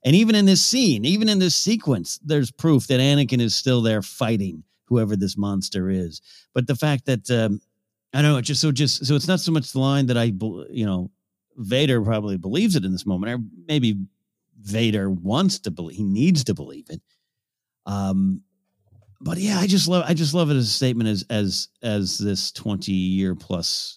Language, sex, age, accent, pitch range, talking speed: English, male, 50-69, American, 95-135 Hz, 205 wpm